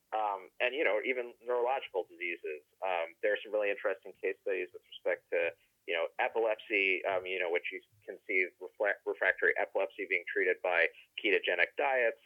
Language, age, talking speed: English, 30-49, 170 wpm